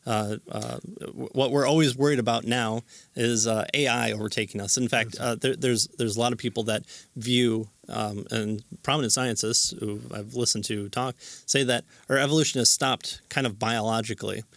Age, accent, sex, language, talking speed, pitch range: 30-49, American, male, English, 175 wpm, 110-130 Hz